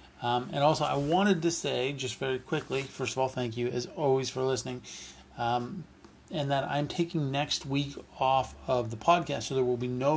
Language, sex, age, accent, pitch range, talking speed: English, male, 30-49, American, 120-150 Hz, 205 wpm